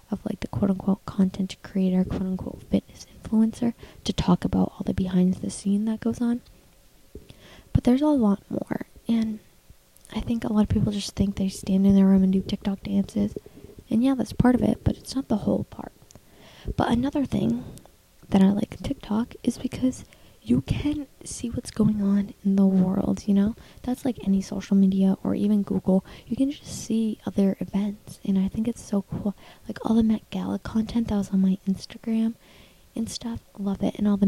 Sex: female